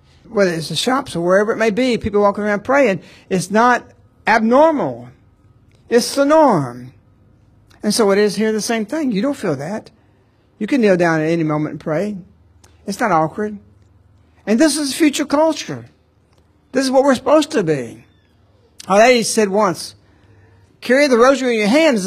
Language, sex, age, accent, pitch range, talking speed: English, male, 60-79, American, 155-230 Hz, 180 wpm